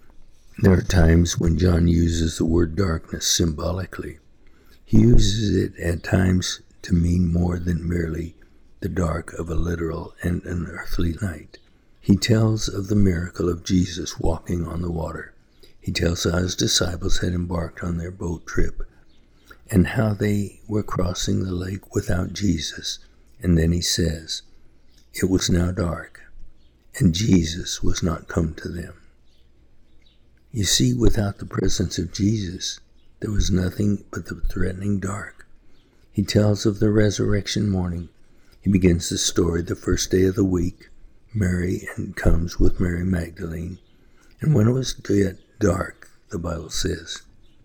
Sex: male